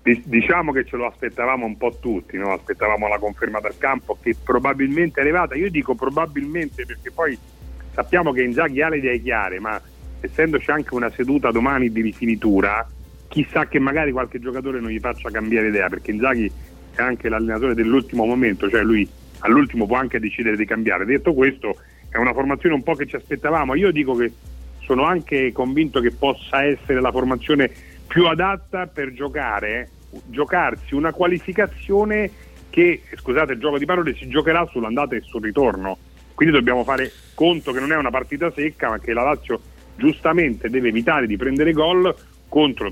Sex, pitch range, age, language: male, 110-150 Hz, 40-59, Italian